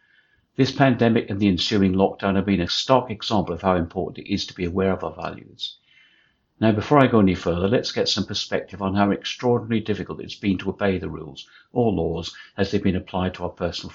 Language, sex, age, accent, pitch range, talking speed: English, male, 60-79, British, 95-110 Hz, 220 wpm